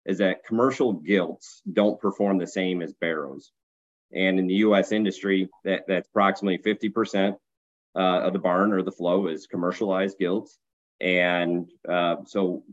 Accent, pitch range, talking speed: American, 90-105 Hz, 150 wpm